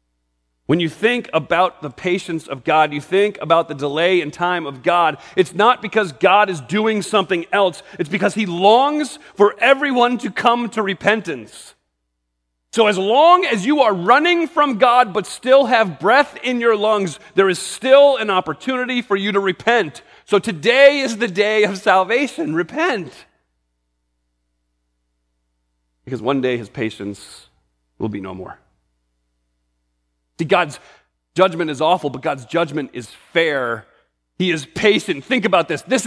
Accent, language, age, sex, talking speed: American, English, 40-59, male, 155 wpm